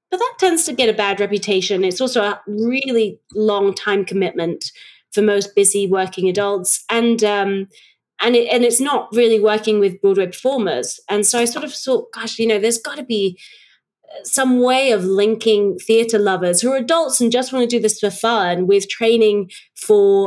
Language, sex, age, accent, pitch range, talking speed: English, female, 30-49, British, 190-235 Hz, 190 wpm